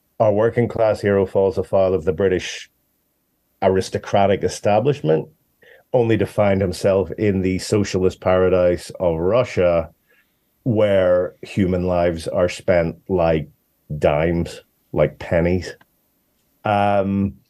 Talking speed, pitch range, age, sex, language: 105 wpm, 95-115 Hz, 40-59, male, English